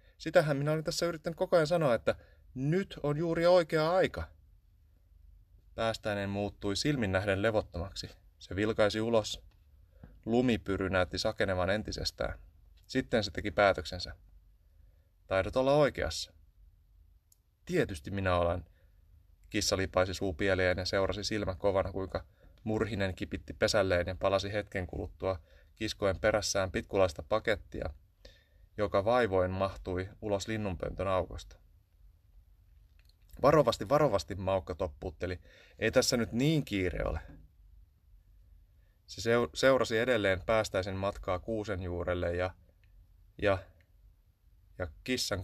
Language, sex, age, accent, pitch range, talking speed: Finnish, male, 30-49, native, 85-105 Hz, 110 wpm